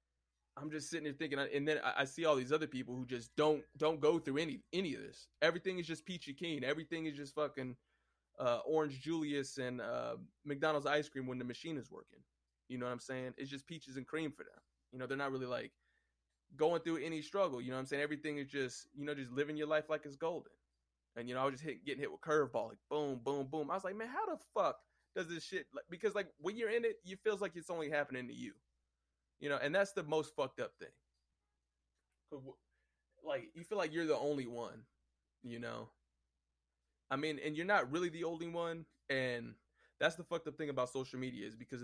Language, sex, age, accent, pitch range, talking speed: English, male, 20-39, American, 120-155 Hz, 230 wpm